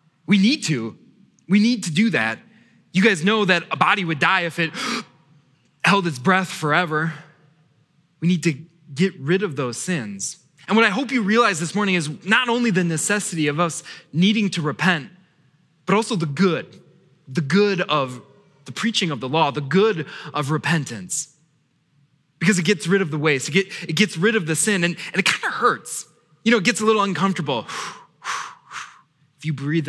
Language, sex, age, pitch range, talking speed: English, male, 20-39, 150-195 Hz, 185 wpm